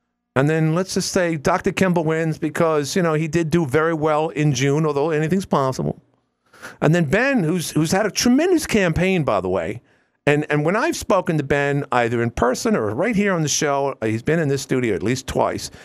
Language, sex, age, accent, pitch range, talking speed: English, male, 50-69, American, 115-170 Hz, 215 wpm